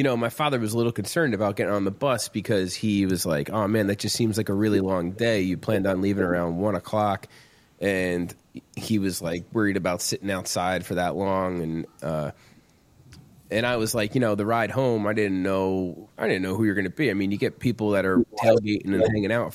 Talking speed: 240 wpm